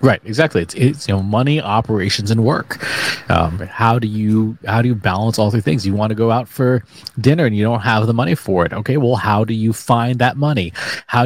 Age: 30-49